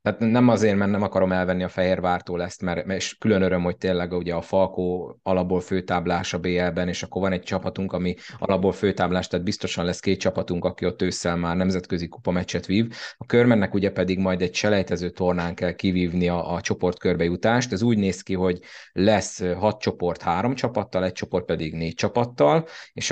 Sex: male